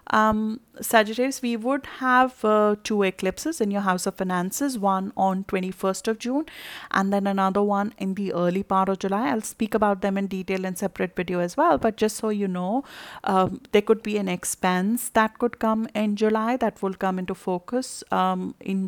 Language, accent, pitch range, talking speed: English, Indian, 185-215 Hz, 195 wpm